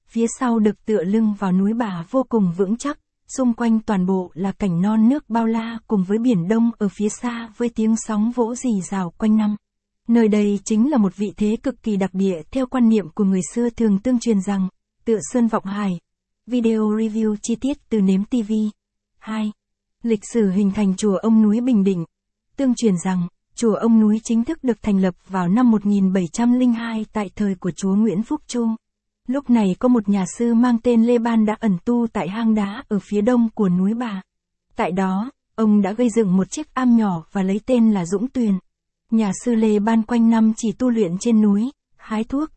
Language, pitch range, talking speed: Vietnamese, 200-235 Hz, 215 wpm